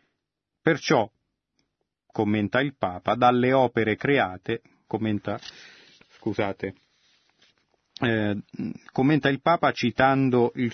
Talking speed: 85 wpm